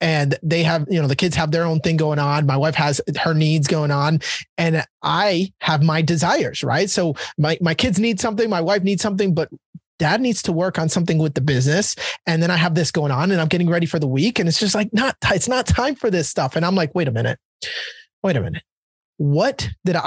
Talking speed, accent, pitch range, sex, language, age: 245 wpm, American, 155-190 Hz, male, English, 30-49